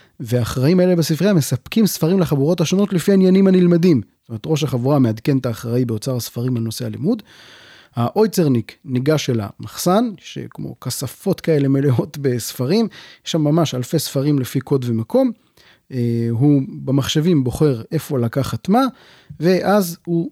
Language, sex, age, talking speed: Hebrew, male, 30-49, 135 wpm